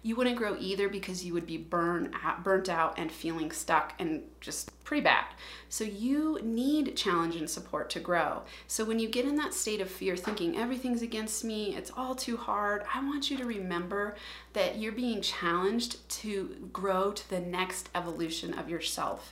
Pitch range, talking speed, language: 175-235 Hz, 185 wpm, English